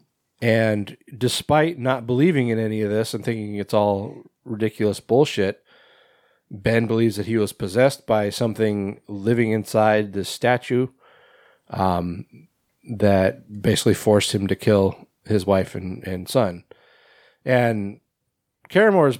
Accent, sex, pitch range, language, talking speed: American, male, 100-120 Hz, English, 130 wpm